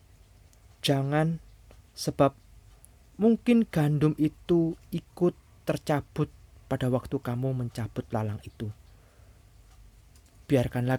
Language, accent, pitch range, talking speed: Indonesian, native, 105-150 Hz, 75 wpm